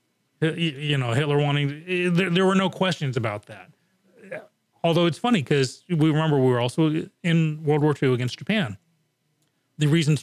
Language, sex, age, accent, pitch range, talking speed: English, male, 40-59, American, 125-160 Hz, 170 wpm